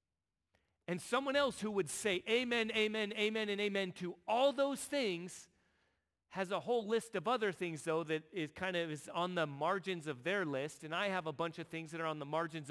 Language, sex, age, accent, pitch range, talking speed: English, male, 40-59, American, 140-200 Hz, 215 wpm